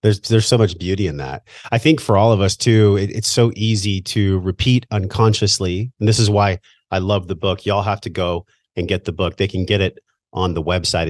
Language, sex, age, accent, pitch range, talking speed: English, male, 30-49, American, 80-105 Hz, 240 wpm